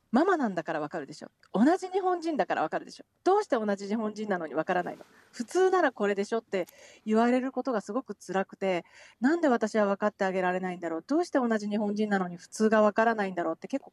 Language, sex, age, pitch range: Japanese, female, 40-59, 190-260 Hz